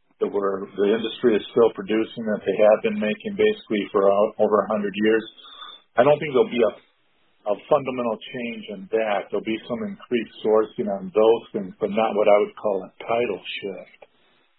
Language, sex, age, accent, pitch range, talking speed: English, male, 50-69, American, 100-120 Hz, 190 wpm